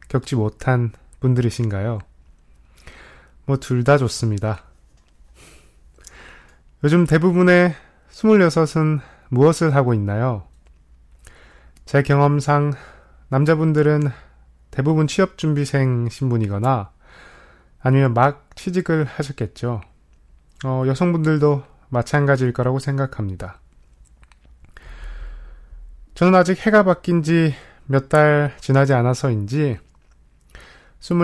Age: 20-39